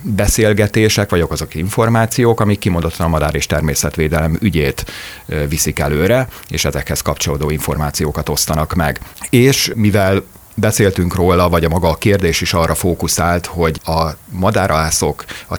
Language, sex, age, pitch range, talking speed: Hungarian, male, 40-59, 80-105 Hz, 135 wpm